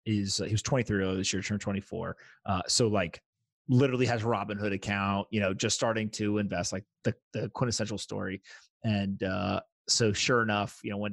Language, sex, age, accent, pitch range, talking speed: English, male, 30-49, American, 105-145 Hz, 205 wpm